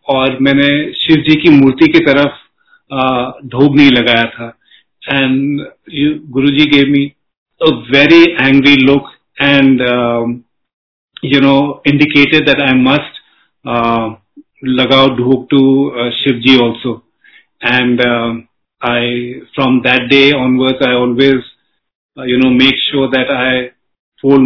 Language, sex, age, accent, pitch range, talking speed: Hindi, male, 30-49, native, 125-140 Hz, 115 wpm